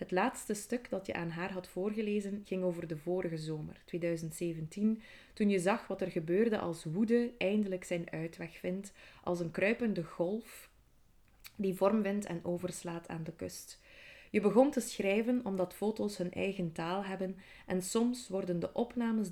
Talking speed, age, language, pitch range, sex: 170 wpm, 20-39, Dutch, 170-205 Hz, female